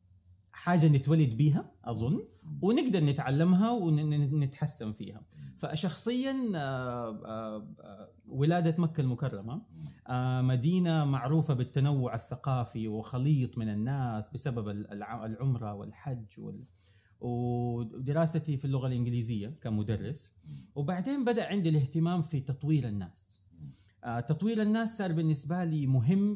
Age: 30-49